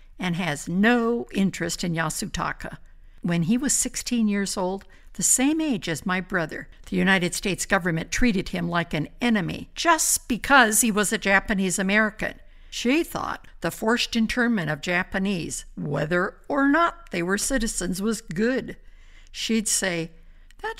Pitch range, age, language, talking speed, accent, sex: 180-235 Hz, 60-79, English, 145 wpm, American, female